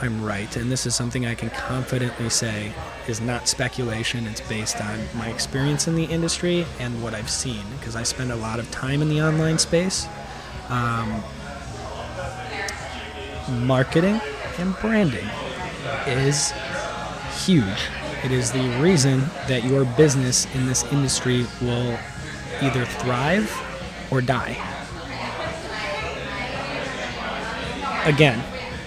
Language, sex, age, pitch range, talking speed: English, male, 20-39, 120-140 Hz, 120 wpm